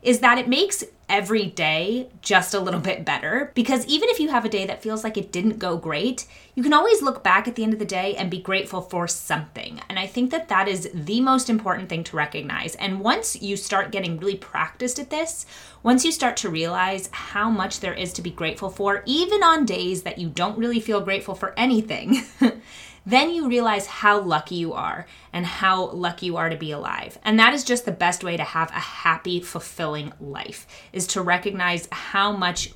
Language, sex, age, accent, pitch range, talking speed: English, female, 20-39, American, 175-235 Hz, 220 wpm